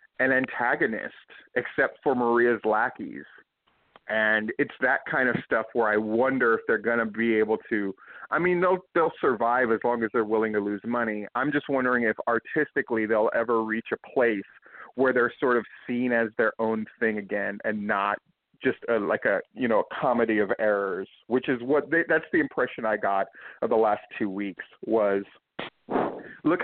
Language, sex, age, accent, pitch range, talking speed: English, male, 40-59, American, 110-160 Hz, 180 wpm